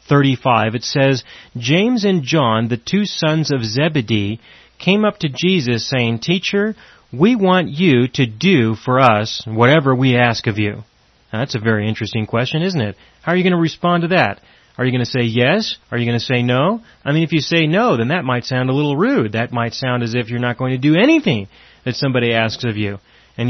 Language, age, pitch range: English, 30-49, 115-160 Hz